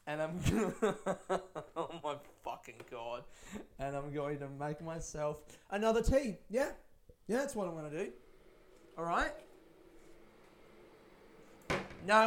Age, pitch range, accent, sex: 20-39, 140-190 Hz, Australian, male